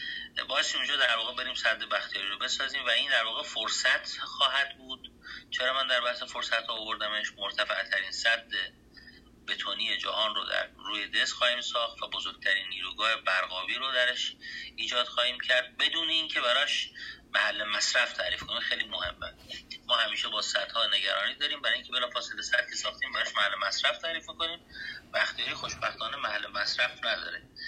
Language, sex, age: Persian, male, 30-49